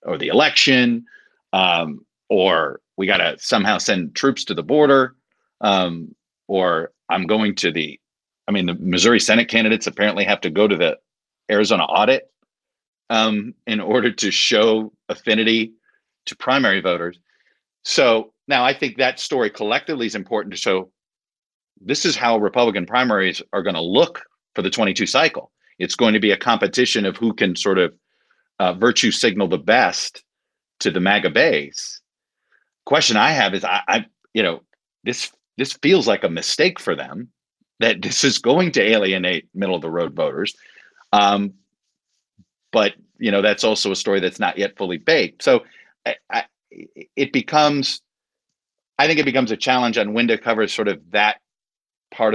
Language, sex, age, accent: English, male, 40-59, American